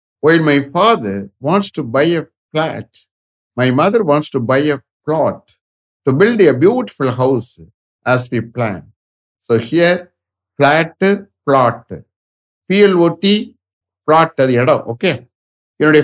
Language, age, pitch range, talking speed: English, 60-79, 110-165 Hz, 120 wpm